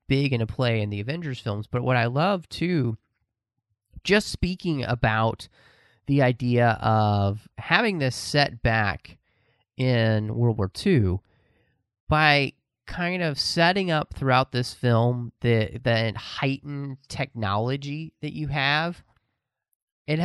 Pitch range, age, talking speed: 105-130 Hz, 30-49, 125 wpm